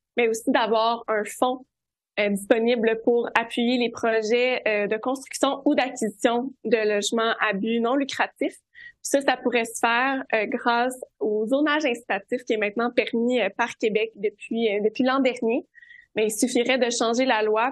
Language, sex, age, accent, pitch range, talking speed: French, female, 20-39, Canadian, 215-250 Hz, 175 wpm